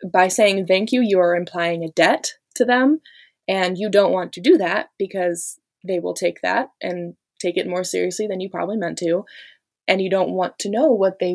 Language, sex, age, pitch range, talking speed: English, female, 20-39, 170-205 Hz, 215 wpm